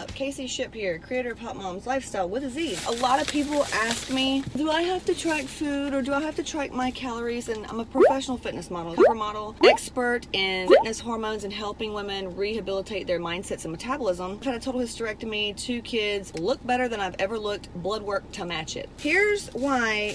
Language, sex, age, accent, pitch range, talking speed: English, female, 30-49, American, 210-275 Hz, 210 wpm